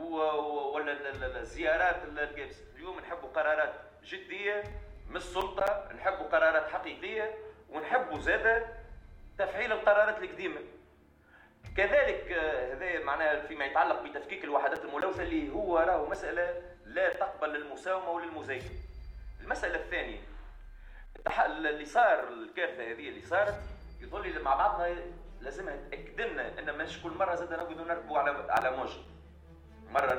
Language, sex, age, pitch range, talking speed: Arabic, male, 40-59, 135-185 Hz, 110 wpm